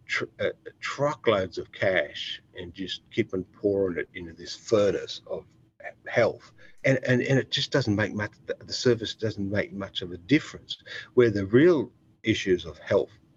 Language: English